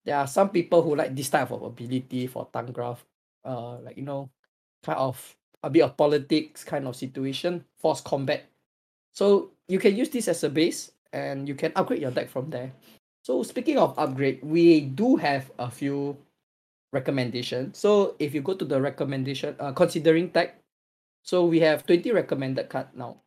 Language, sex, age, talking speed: English, male, 20-39, 180 wpm